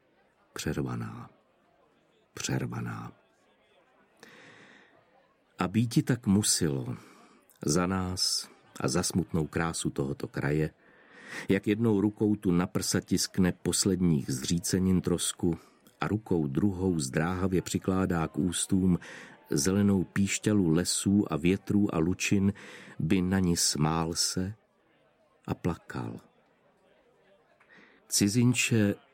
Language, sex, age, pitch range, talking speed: Czech, male, 50-69, 85-100 Hz, 95 wpm